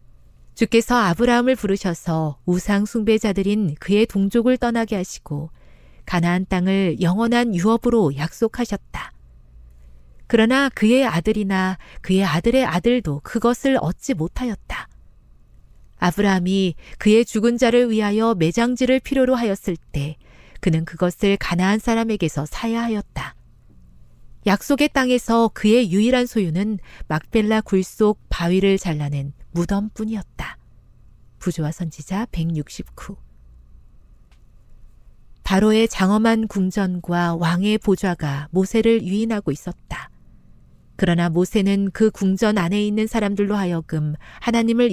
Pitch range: 165-230 Hz